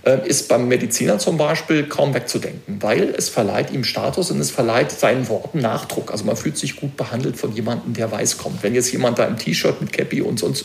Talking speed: 220 wpm